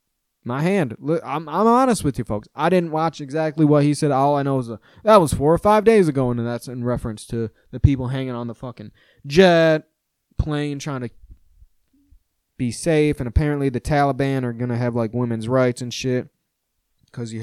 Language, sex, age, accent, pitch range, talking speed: English, male, 20-39, American, 120-165 Hz, 205 wpm